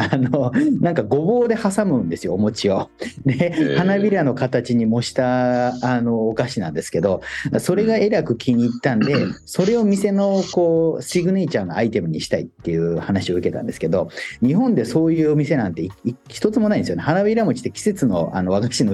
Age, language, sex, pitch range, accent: 40-59, Japanese, male, 120-170 Hz, native